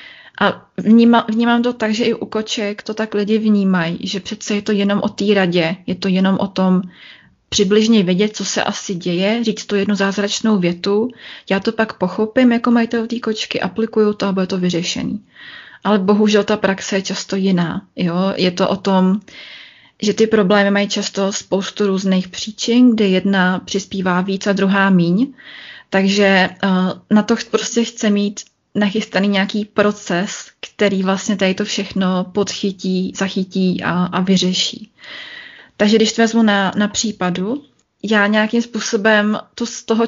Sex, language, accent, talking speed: female, Czech, native, 165 wpm